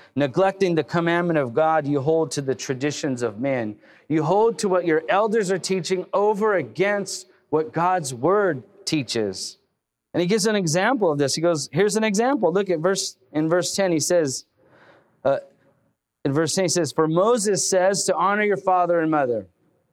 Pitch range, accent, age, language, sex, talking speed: 155-195 Hz, American, 30-49, English, male, 185 wpm